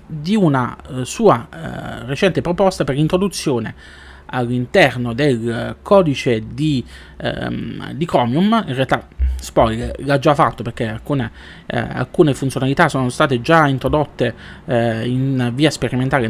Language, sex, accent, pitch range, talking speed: Italian, male, native, 120-155 Hz, 135 wpm